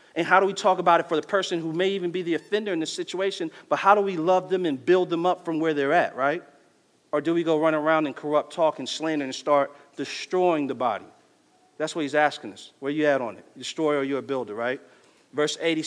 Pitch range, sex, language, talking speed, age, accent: 140-180 Hz, male, English, 255 wpm, 40-59, American